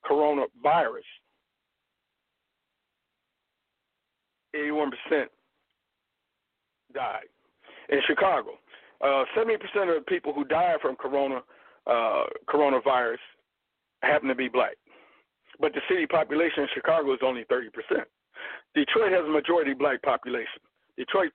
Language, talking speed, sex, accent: English, 100 wpm, male, American